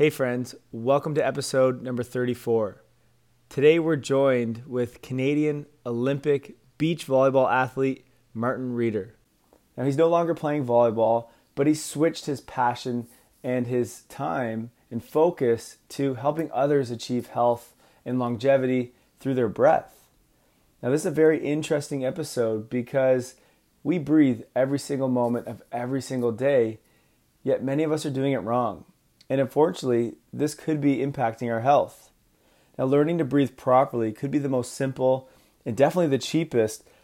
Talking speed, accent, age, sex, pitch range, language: 145 wpm, American, 20-39, male, 120-140 Hz, English